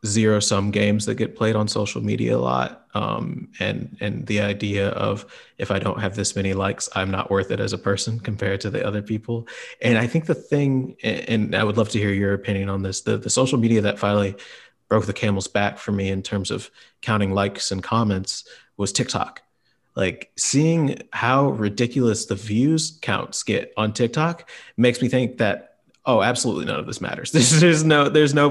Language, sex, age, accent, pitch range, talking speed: English, male, 30-49, American, 100-120 Hz, 205 wpm